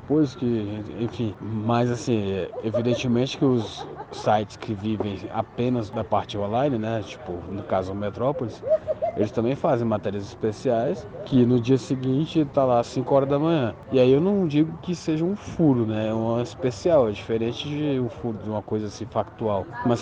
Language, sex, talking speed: Portuguese, male, 170 wpm